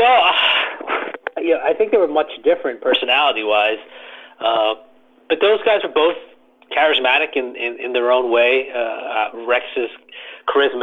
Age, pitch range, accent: 30-49, 120-175 Hz, American